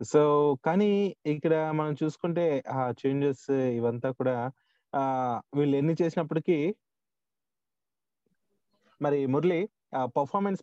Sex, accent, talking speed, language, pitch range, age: male, native, 85 wpm, Telugu, 130-175 Hz, 20-39